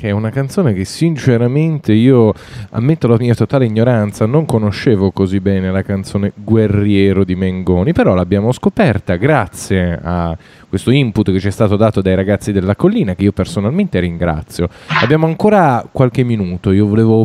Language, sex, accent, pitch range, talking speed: Italian, male, native, 100-140 Hz, 160 wpm